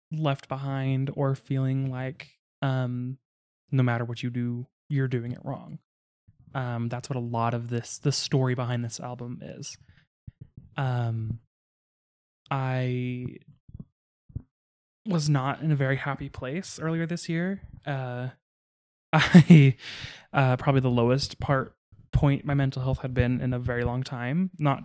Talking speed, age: 140 wpm, 20-39